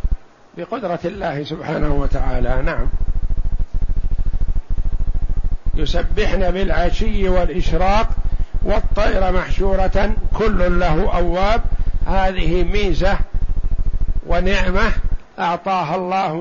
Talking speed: 65 wpm